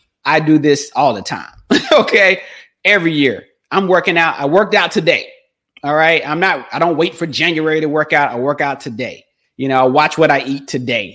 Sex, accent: male, American